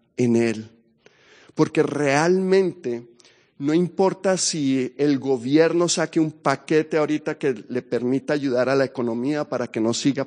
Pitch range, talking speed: 135-170 Hz, 140 wpm